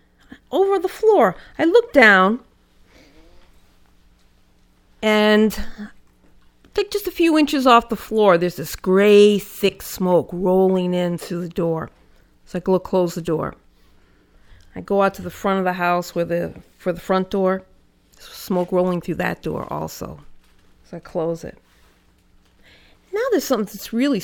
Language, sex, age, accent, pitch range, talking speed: English, female, 40-59, American, 170-205 Hz, 150 wpm